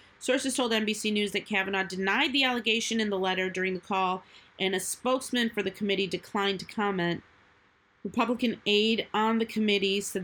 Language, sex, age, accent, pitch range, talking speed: English, female, 30-49, American, 190-220 Hz, 175 wpm